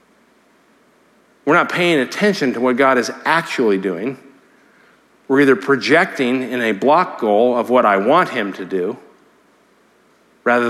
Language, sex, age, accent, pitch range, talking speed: English, male, 50-69, American, 120-165 Hz, 140 wpm